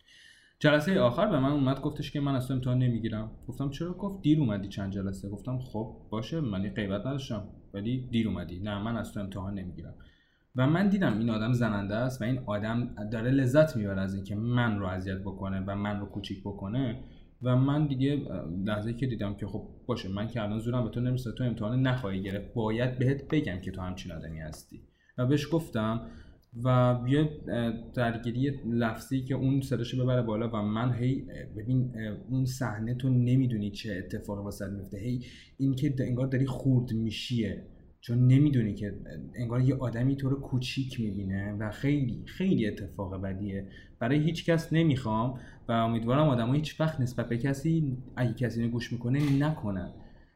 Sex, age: male, 20-39